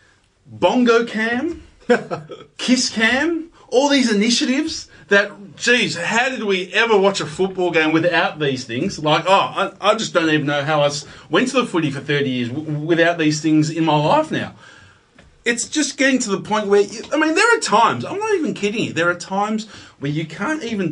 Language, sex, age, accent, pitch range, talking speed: English, male, 30-49, Australian, 155-230 Hz, 195 wpm